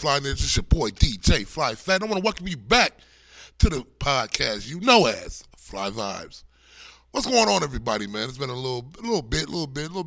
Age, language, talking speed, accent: 20-39, English, 220 wpm, American